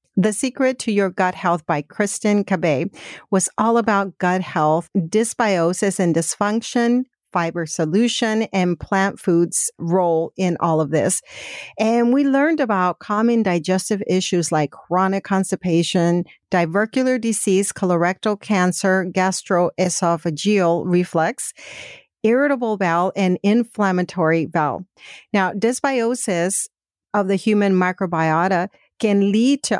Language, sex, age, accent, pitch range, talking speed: English, female, 50-69, American, 170-205 Hz, 115 wpm